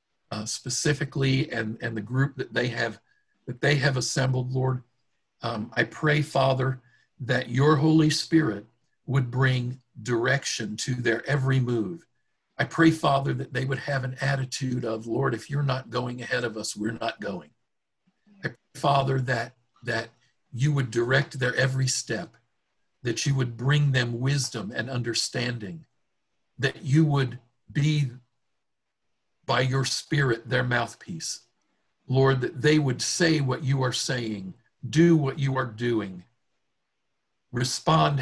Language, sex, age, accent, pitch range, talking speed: English, male, 50-69, American, 120-145 Hz, 145 wpm